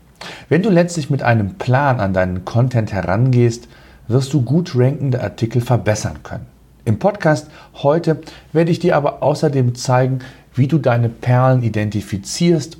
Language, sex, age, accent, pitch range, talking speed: German, male, 40-59, German, 115-145 Hz, 145 wpm